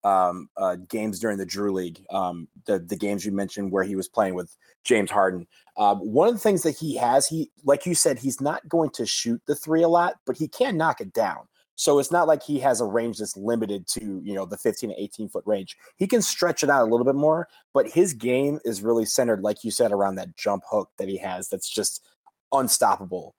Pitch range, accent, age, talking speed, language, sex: 105-150 Hz, American, 30-49, 240 wpm, English, male